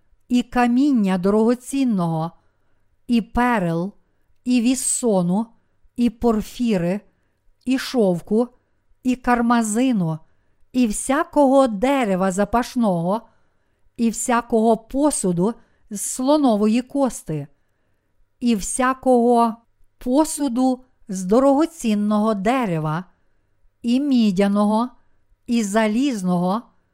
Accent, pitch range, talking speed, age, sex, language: native, 190-250 Hz, 75 wpm, 50-69, female, Ukrainian